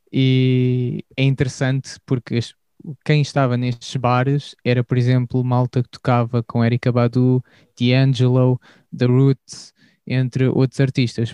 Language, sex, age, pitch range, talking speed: Portuguese, male, 20-39, 125-135 Hz, 120 wpm